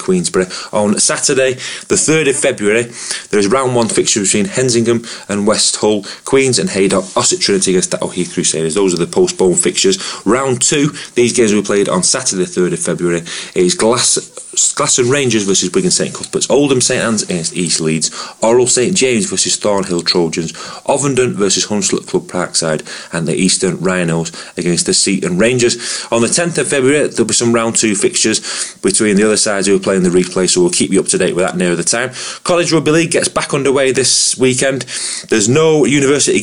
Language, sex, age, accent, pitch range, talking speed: English, male, 30-49, British, 95-130 Hz, 195 wpm